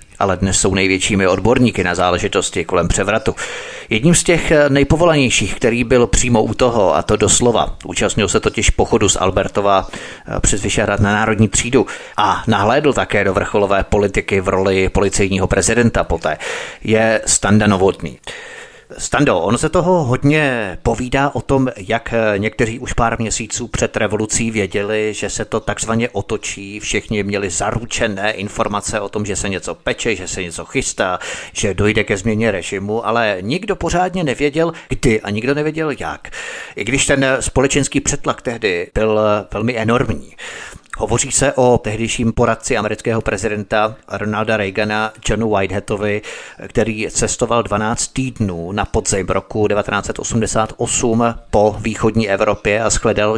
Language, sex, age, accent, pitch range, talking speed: Czech, male, 30-49, native, 100-125 Hz, 145 wpm